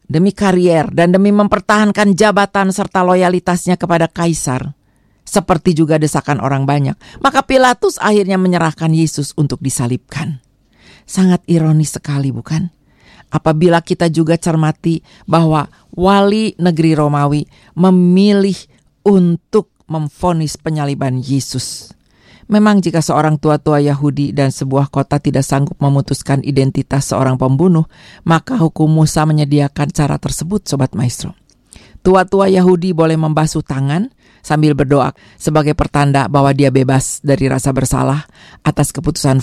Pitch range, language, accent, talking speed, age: 140-180 Hz, Indonesian, native, 120 wpm, 40-59